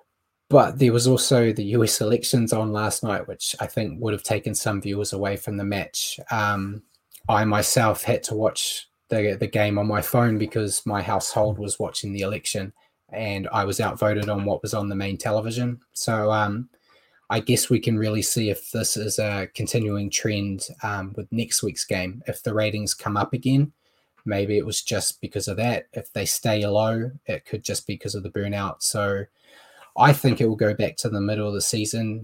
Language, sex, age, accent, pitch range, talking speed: English, male, 20-39, Australian, 100-115 Hz, 205 wpm